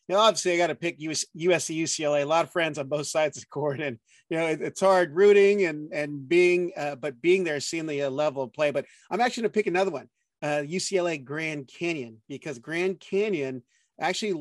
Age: 30-49